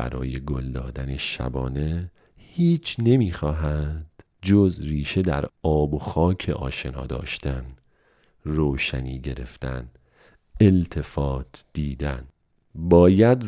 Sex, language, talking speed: male, Persian, 85 wpm